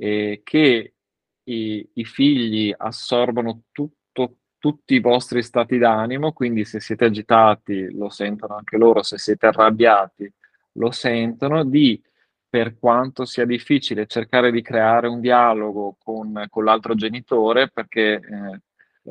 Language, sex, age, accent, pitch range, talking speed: Italian, male, 20-39, native, 105-120 Hz, 130 wpm